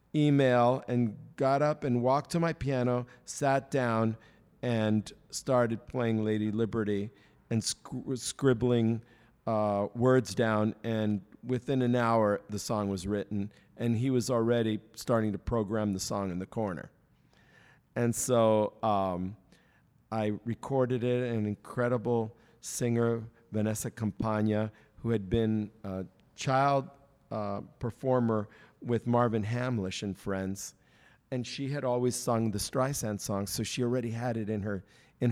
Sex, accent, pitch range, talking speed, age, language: male, American, 105-125 Hz, 135 wpm, 50-69, English